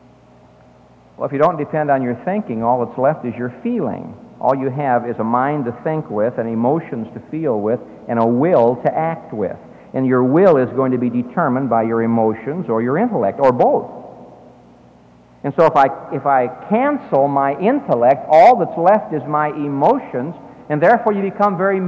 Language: English